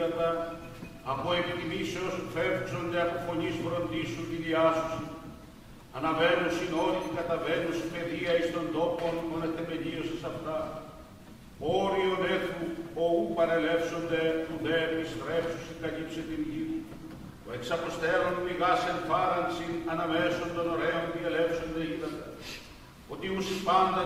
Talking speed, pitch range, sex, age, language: 110 wpm, 165-180 Hz, male, 50-69, Greek